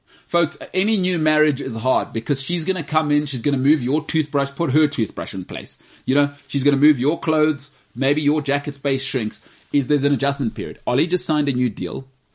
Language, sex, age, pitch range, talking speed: English, male, 30-49, 135-175 Hz, 230 wpm